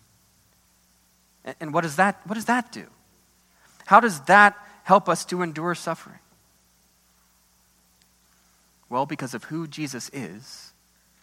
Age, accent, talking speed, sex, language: 30-49, American, 105 wpm, male, English